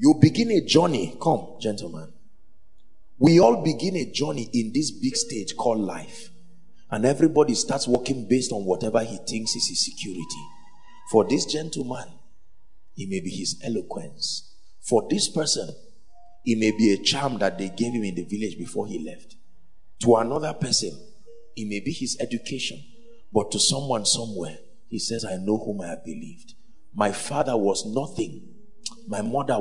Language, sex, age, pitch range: English, male, 50-69, 105-170 Hz